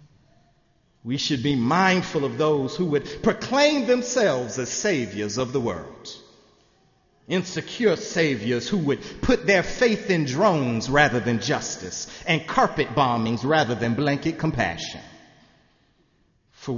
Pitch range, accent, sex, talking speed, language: 140-225 Hz, American, male, 125 wpm, English